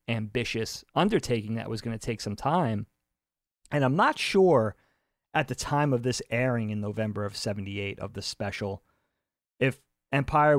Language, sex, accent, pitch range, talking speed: English, male, American, 110-145 Hz, 160 wpm